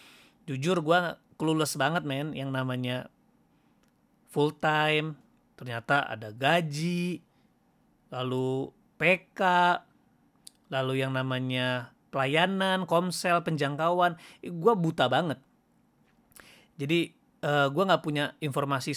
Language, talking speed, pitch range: Indonesian, 90 wpm, 130-175 Hz